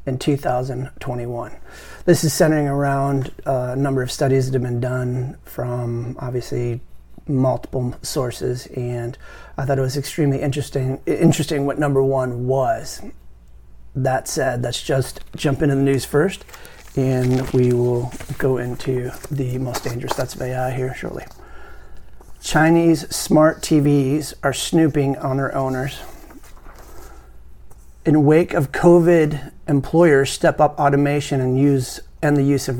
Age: 30-49